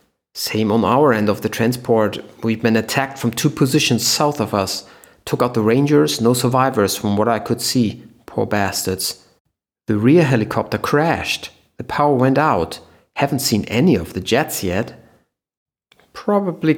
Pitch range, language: 100-130 Hz, English